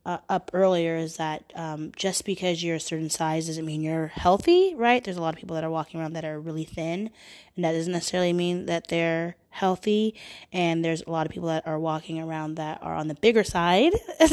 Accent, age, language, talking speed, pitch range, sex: American, 20-39, English, 230 wpm, 160-190 Hz, female